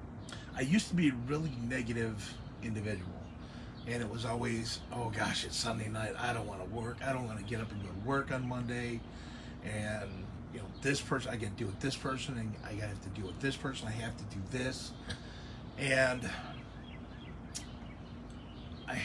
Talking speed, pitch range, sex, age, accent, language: 190 wpm, 105-130 Hz, male, 30-49, American, English